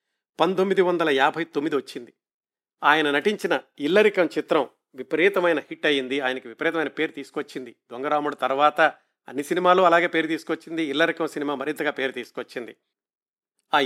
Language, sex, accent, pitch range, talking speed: Telugu, male, native, 150-180 Hz, 125 wpm